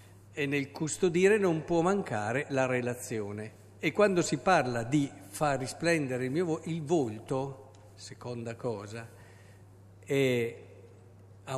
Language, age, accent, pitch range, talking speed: Italian, 50-69, native, 110-165 Hz, 110 wpm